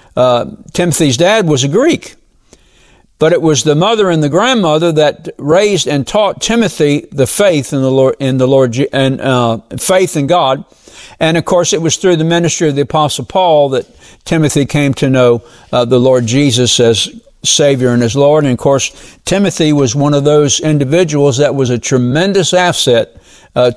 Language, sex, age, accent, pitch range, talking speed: English, male, 60-79, American, 135-195 Hz, 185 wpm